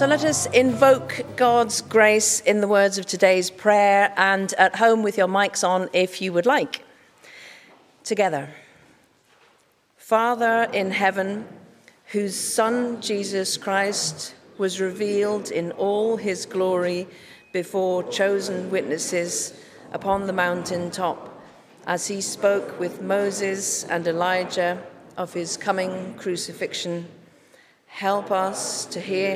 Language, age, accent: English, 50-69, British